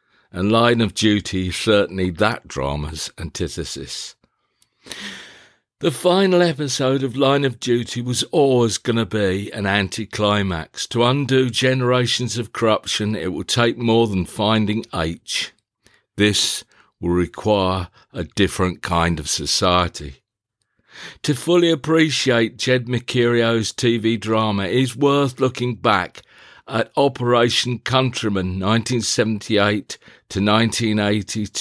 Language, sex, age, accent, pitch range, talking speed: English, male, 50-69, British, 100-125 Hz, 110 wpm